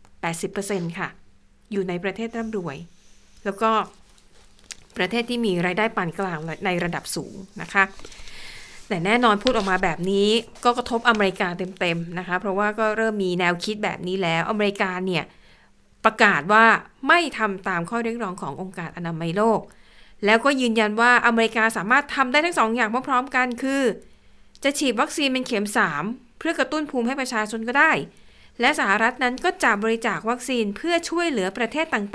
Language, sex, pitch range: Thai, female, 190-240 Hz